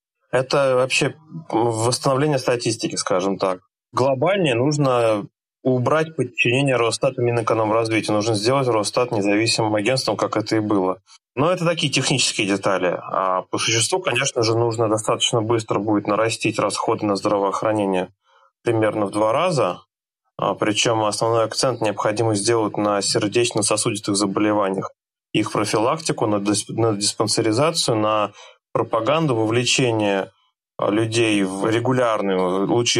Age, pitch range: 20-39, 105-125 Hz